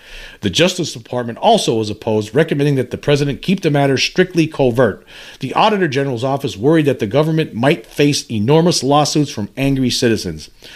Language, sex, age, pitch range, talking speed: English, male, 50-69, 110-155 Hz, 165 wpm